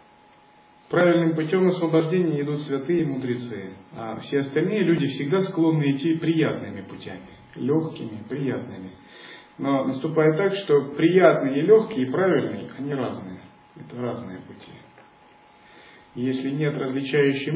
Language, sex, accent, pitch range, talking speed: Russian, male, native, 125-160 Hz, 125 wpm